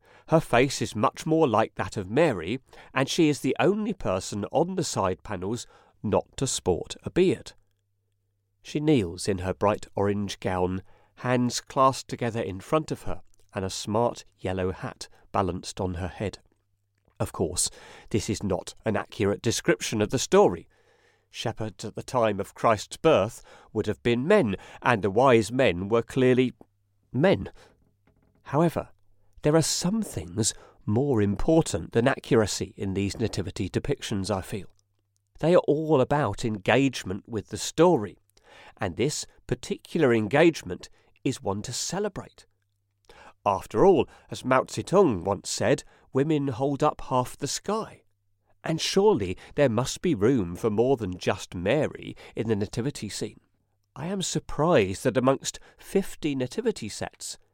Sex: male